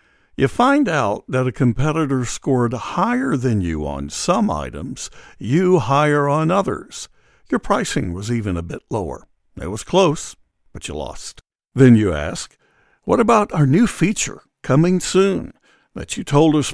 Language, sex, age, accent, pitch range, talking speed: English, male, 60-79, American, 115-155 Hz, 160 wpm